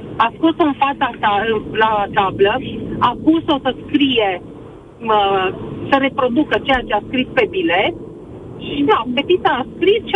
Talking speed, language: 155 wpm, Romanian